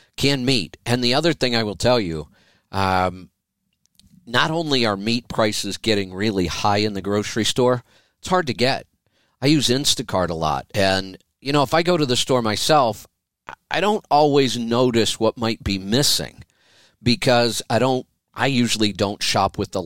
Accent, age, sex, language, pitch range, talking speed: American, 50-69, male, English, 95-125 Hz, 180 wpm